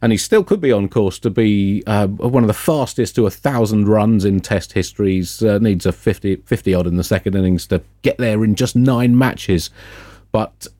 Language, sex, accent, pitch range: English, male, British, 100-130 Hz